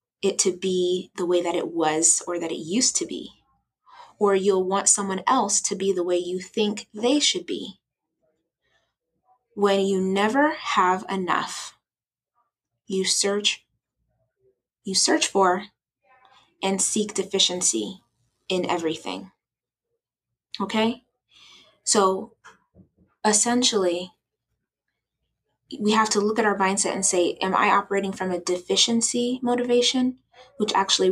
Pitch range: 180-220 Hz